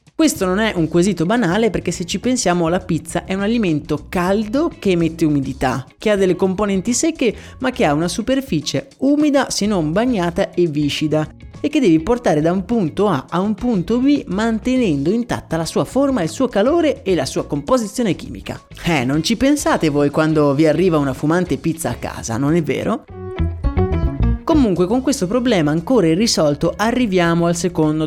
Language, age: Italian, 30-49